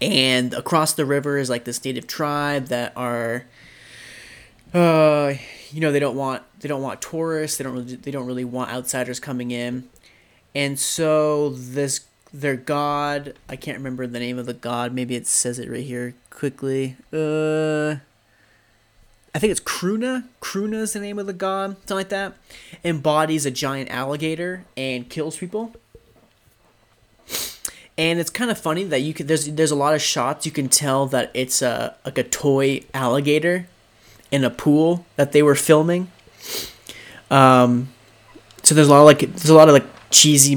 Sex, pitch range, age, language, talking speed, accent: male, 125-155 Hz, 20-39, English, 175 wpm, American